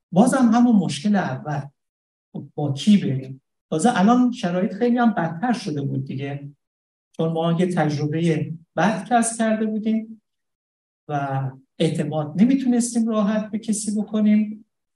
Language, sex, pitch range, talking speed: Persian, male, 140-215 Hz, 130 wpm